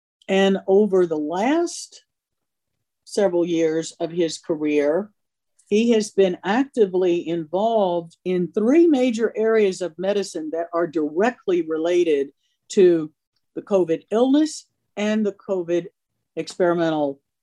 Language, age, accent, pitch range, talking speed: English, 50-69, American, 165-215 Hz, 110 wpm